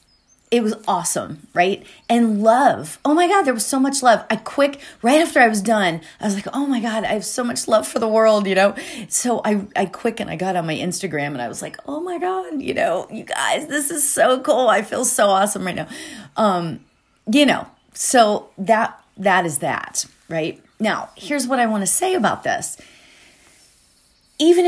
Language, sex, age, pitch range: English, female, 30-49, 175-245 Hz